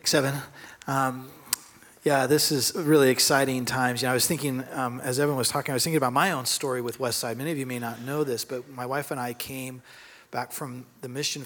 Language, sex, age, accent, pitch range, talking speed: English, male, 30-49, American, 125-150 Hz, 230 wpm